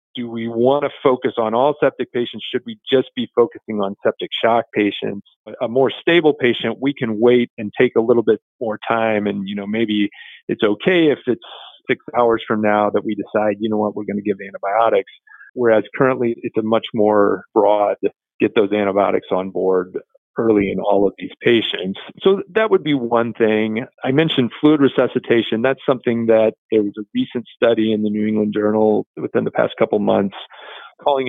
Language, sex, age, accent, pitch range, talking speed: English, male, 40-59, American, 105-130 Hz, 190 wpm